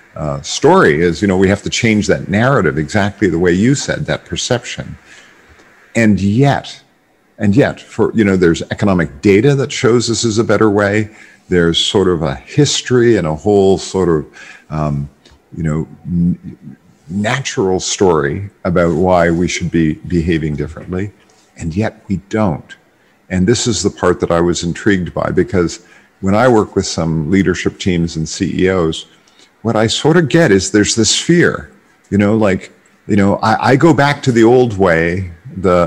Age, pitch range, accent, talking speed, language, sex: 50-69, 85-110 Hz, American, 175 wpm, English, male